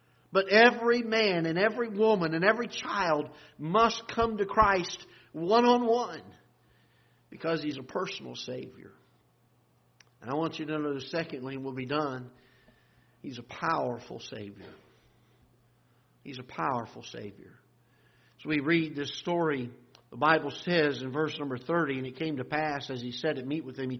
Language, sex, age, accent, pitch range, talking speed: English, male, 50-69, American, 125-165 Hz, 160 wpm